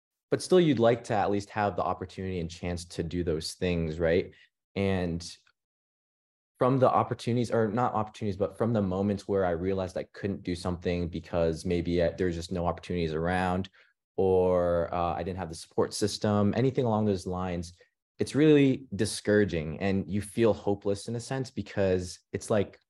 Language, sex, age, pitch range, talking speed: English, male, 20-39, 90-105 Hz, 175 wpm